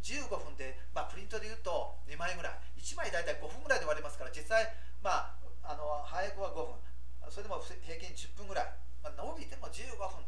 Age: 40-59